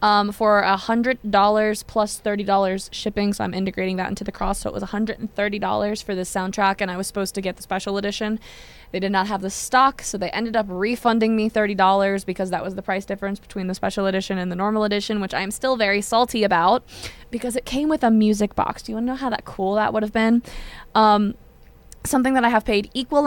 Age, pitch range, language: 20-39, 195-220 Hz, English